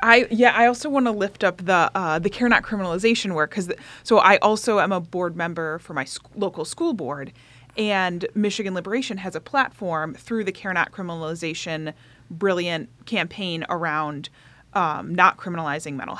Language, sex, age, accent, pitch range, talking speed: English, female, 30-49, American, 155-205 Hz, 160 wpm